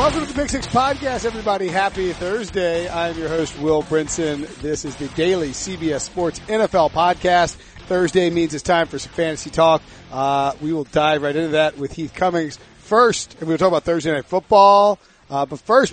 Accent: American